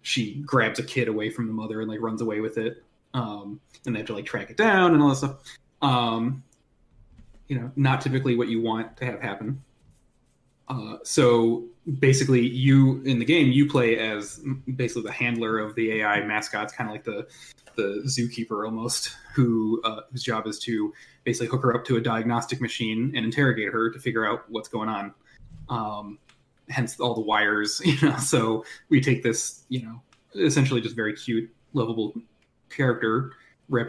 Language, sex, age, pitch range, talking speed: English, male, 20-39, 110-130 Hz, 185 wpm